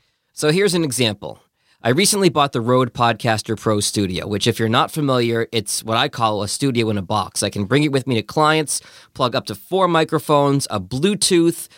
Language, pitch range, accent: English, 115-150 Hz, American